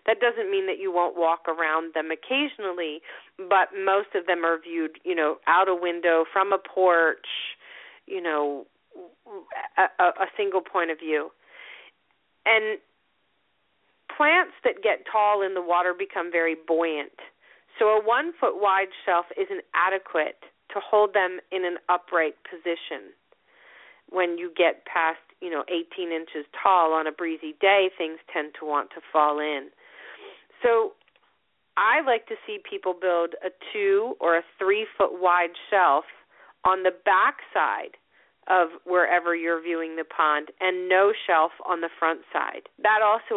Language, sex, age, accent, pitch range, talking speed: English, female, 40-59, American, 165-205 Hz, 150 wpm